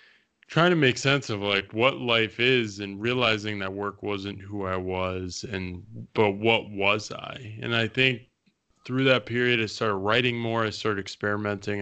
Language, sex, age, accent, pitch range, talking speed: English, male, 20-39, American, 95-115 Hz, 180 wpm